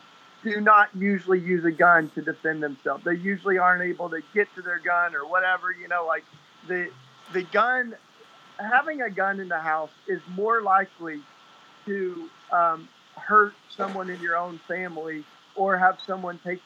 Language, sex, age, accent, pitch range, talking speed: English, male, 40-59, American, 160-185 Hz, 170 wpm